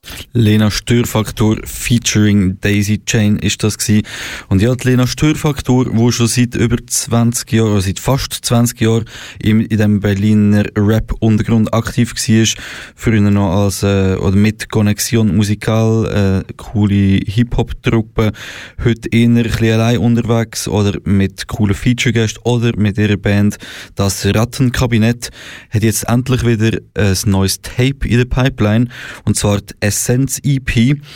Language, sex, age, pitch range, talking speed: German, male, 20-39, 105-120 Hz, 135 wpm